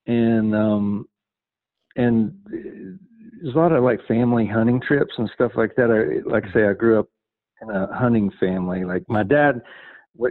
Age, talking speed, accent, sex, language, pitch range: 50-69, 175 wpm, American, male, English, 90-110 Hz